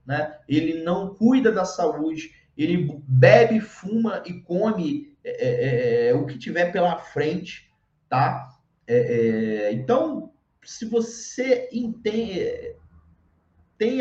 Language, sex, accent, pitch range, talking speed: Portuguese, male, Brazilian, 135-205 Hz, 115 wpm